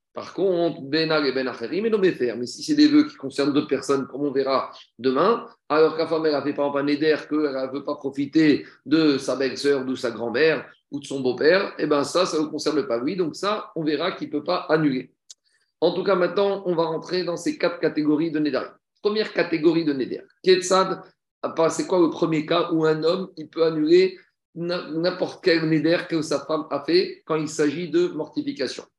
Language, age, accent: French, 40-59, French